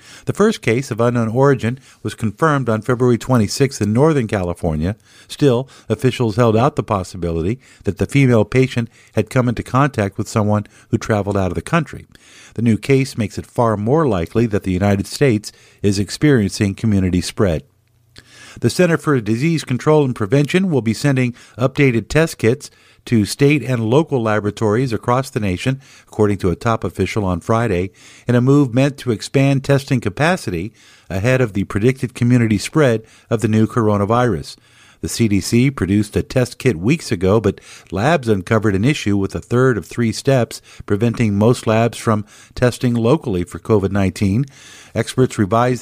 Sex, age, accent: male, 50-69, American